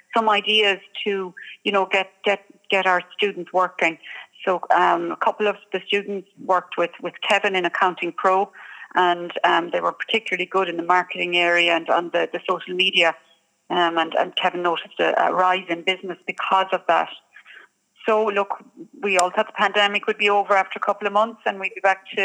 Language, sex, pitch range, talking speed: English, female, 180-205 Hz, 200 wpm